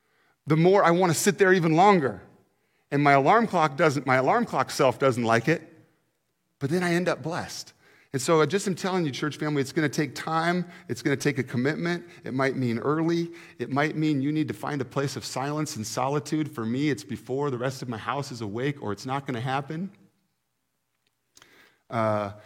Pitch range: 130-200 Hz